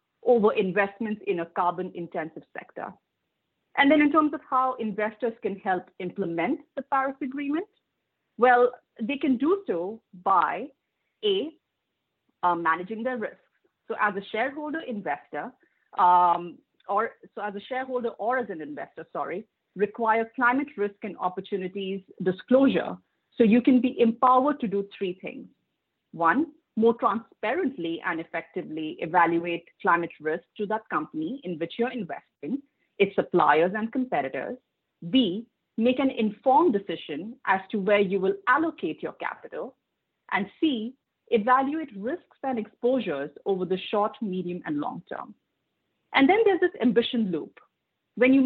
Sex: female